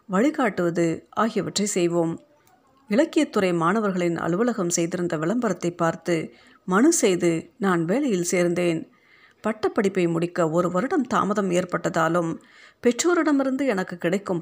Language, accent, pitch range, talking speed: Tamil, native, 170-235 Hz, 90 wpm